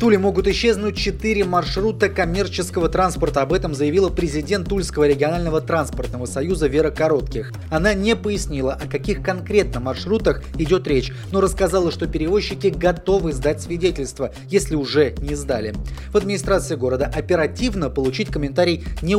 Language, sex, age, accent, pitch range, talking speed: Russian, male, 20-39, native, 145-195 Hz, 140 wpm